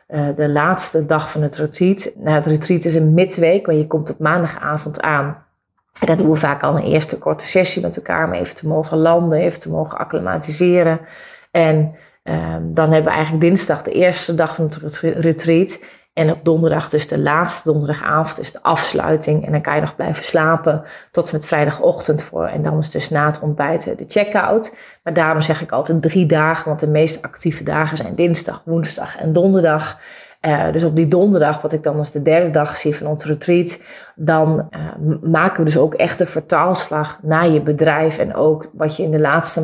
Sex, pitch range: female, 155-170 Hz